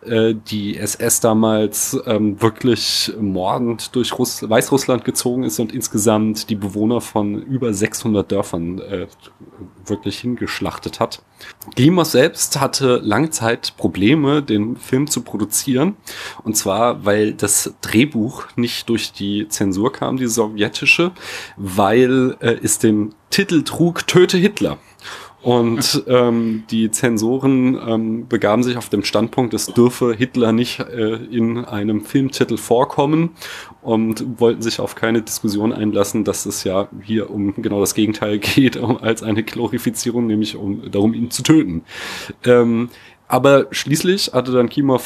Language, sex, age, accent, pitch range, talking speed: German, male, 30-49, German, 105-125 Hz, 135 wpm